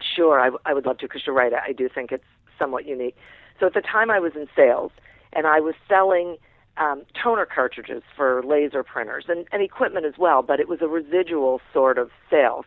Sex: female